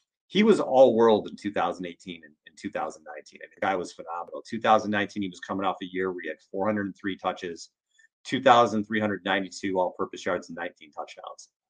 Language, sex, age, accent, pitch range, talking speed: English, male, 30-49, American, 100-125 Hz, 170 wpm